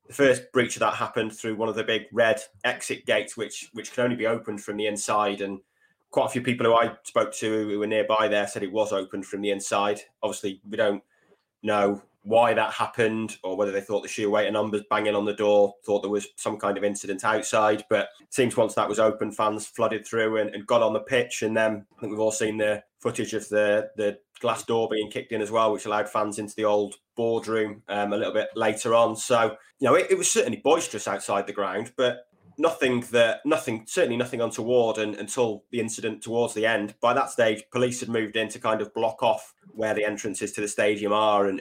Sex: male